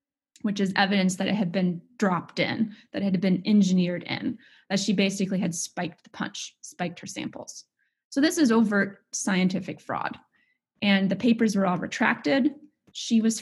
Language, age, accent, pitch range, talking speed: English, 20-39, American, 190-225 Hz, 175 wpm